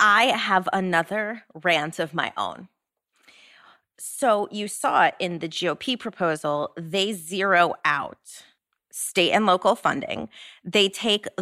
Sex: female